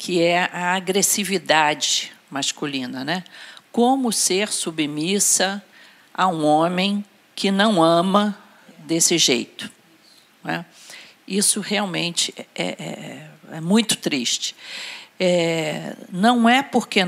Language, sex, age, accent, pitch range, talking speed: Portuguese, female, 50-69, Brazilian, 175-225 Hz, 95 wpm